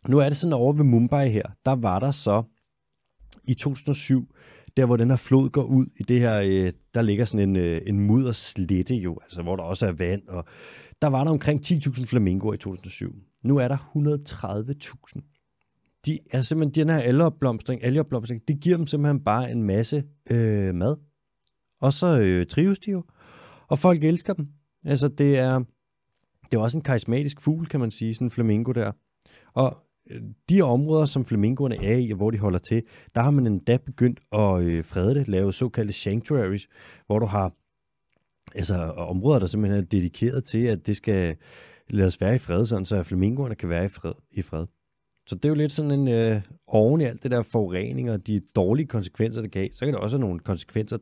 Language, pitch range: Danish, 100-140 Hz